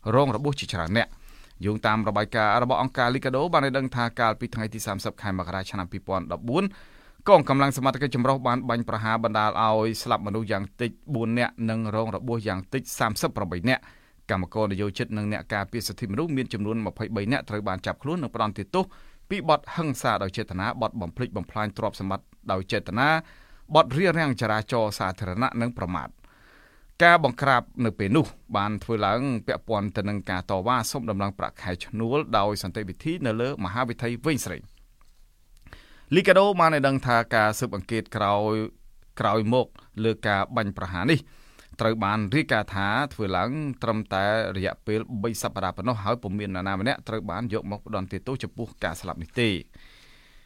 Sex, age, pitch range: male, 20-39, 100-125 Hz